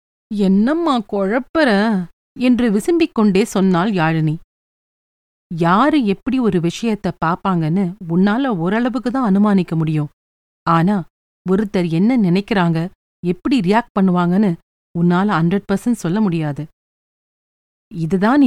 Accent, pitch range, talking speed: native, 165-220 Hz, 95 wpm